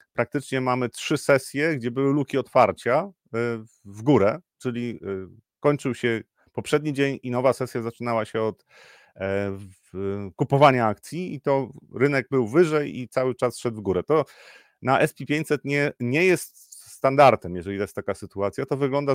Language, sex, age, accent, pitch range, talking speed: Polish, male, 30-49, native, 110-130 Hz, 145 wpm